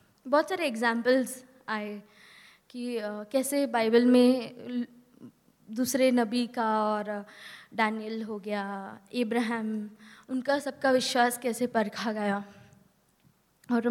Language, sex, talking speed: English, female, 100 wpm